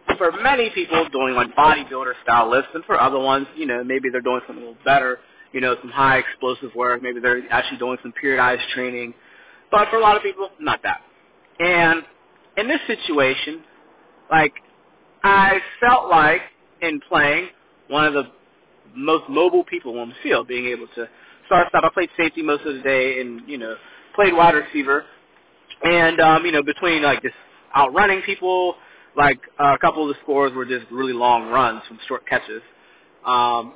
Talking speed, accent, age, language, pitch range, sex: 180 wpm, American, 30-49, English, 130-190 Hz, male